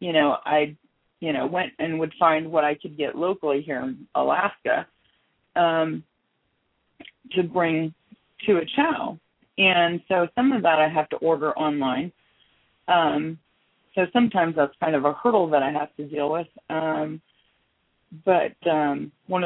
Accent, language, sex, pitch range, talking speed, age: American, English, female, 150-185 Hz, 155 wpm, 40-59